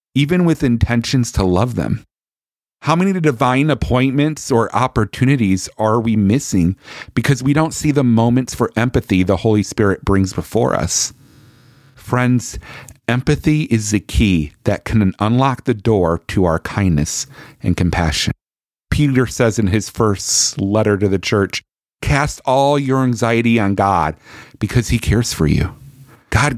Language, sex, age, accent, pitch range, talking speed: English, male, 40-59, American, 105-135 Hz, 145 wpm